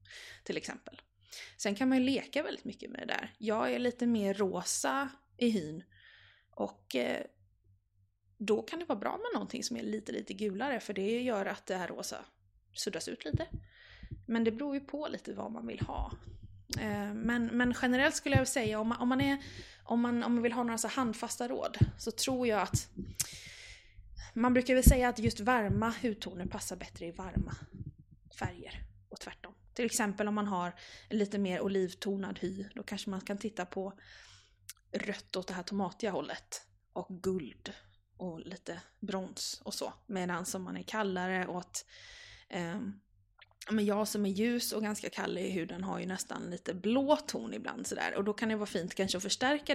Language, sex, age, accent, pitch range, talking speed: Swedish, female, 20-39, native, 180-240 Hz, 180 wpm